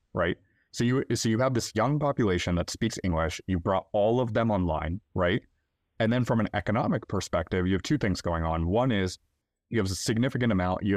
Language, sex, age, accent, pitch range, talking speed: English, male, 30-49, American, 85-105 Hz, 215 wpm